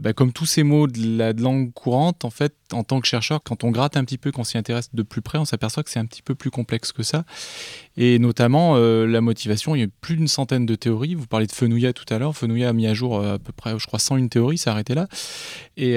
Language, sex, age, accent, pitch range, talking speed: French, male, 20-39, French, 115-150 Hz, 295 wpm